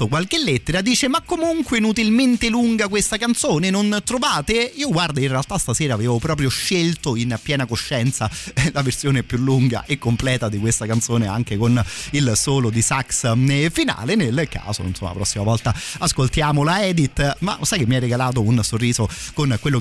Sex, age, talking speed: male, 30-49, 175 wpm